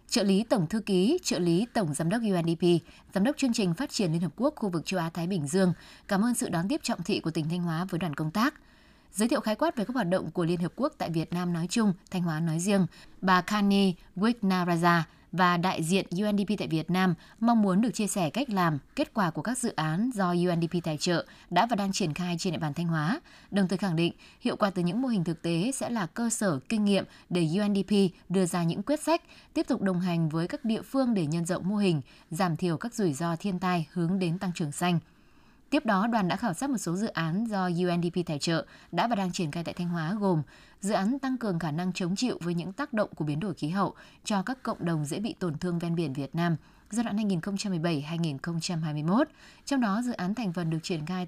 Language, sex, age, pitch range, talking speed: Vietnamese, female, 20-39, 170-215 Hz, 250 wpm